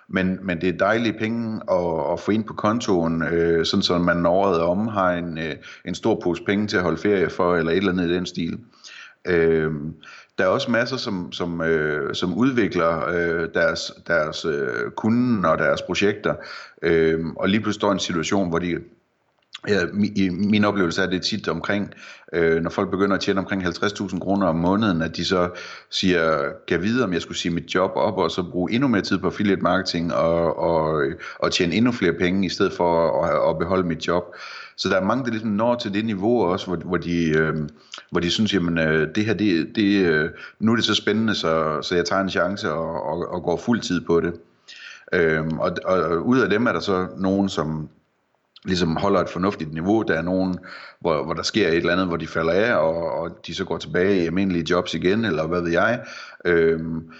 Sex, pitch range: male, 85-100 Hz